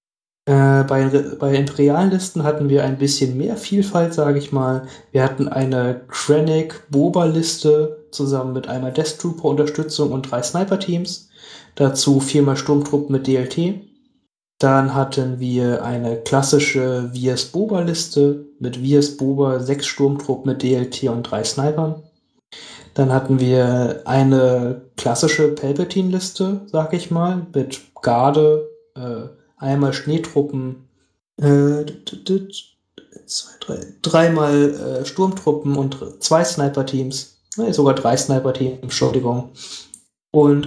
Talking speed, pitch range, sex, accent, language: 115 wpm, 135-160 Hz, male, German, German